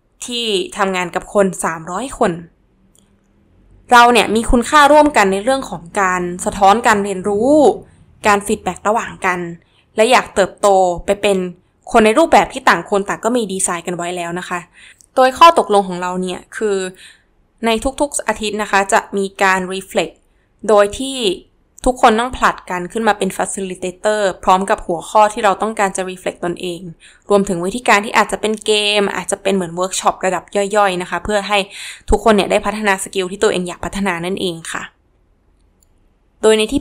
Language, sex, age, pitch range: Thai, female, 20-39, 185-220 Hz